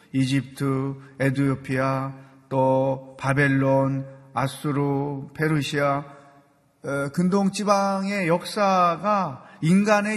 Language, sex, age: Korean, male, 40-59